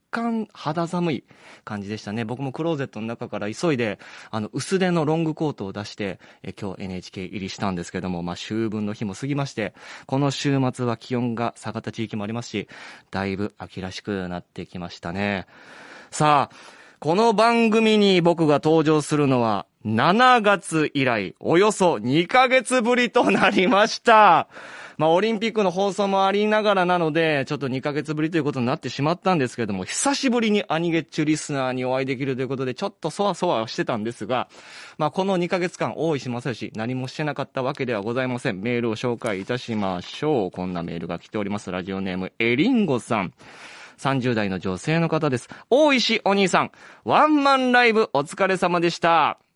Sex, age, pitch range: male, 20-39, 110-175 Hz